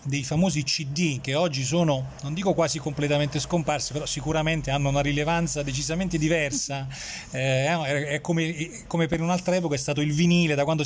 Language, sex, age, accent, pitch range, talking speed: Italian, male, 30-49, native, 130-160 Hz, 175 wpm